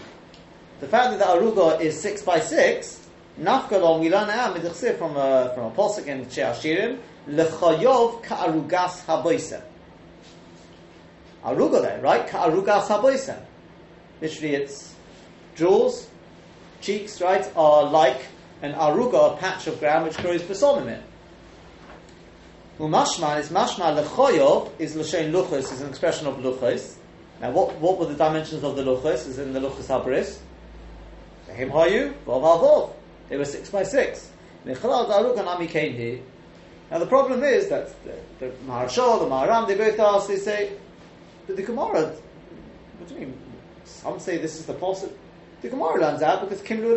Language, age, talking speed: English, 40-59, 135 wpm